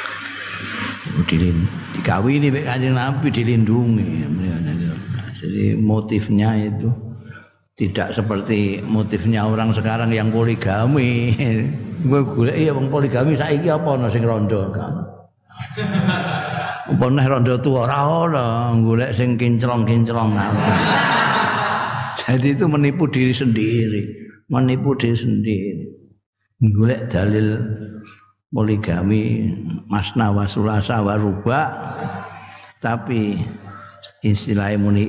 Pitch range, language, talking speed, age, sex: 100-120 Hz, Indonesian, 60 wpm, 50-69, male